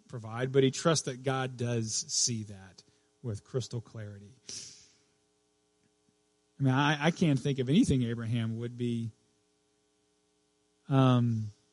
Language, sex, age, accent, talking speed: English, male, 40-59, American, 125 wpm